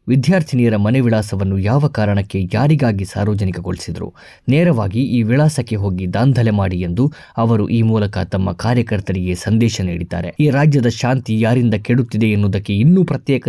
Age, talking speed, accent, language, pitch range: 20-39, 130 wpm, native, Kannada, 100-125 Hz